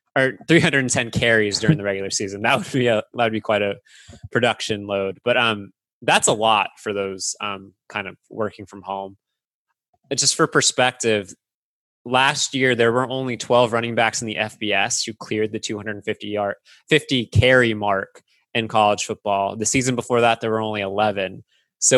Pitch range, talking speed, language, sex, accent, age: 105-125 Hz, 180 wpm, English, male, American, 20-39